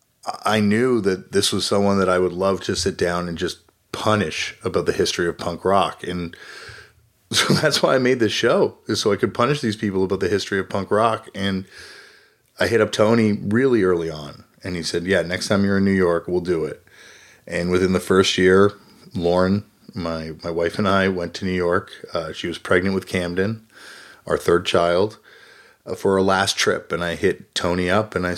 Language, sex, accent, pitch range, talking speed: English, male, American, 90-115 Hz, 210 wpm